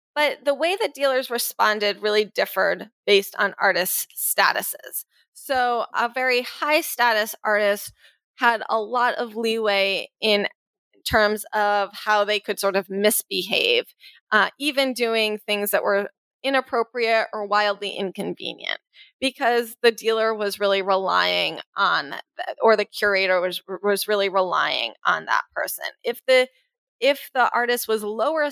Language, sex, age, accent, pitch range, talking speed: English, female, 20-39, American, 205-265 Hz, 140 wpm